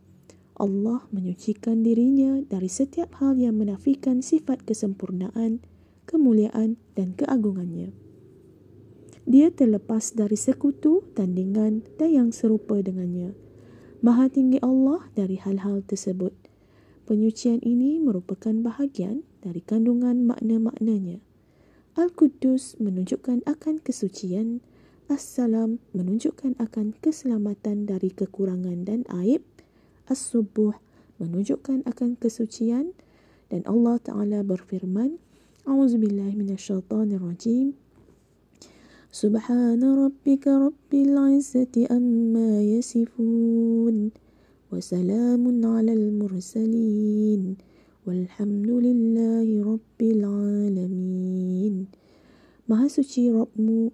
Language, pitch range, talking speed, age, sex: Malay, 200-245 Hz, 80 wpm, 20-39, female